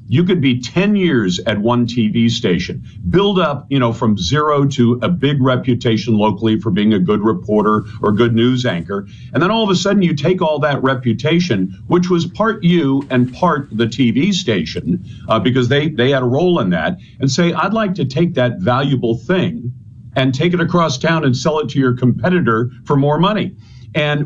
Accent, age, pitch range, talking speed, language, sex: American, 50-69, 115-170 Hz, 205 wpm, English, male